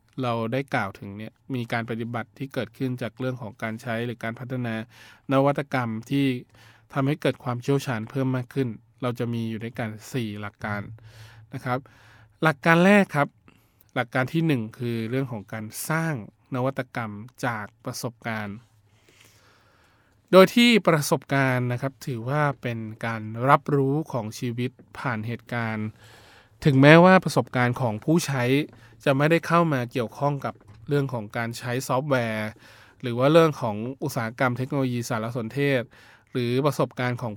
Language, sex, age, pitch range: Thai, male, 20-39, 110-135 Hz